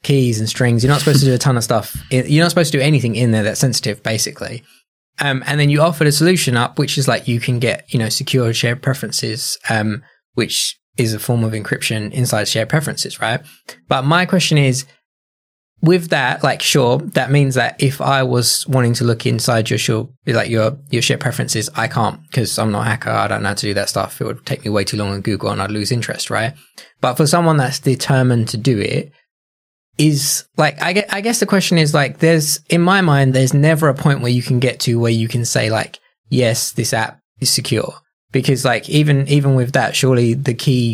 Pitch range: 115-145 Hz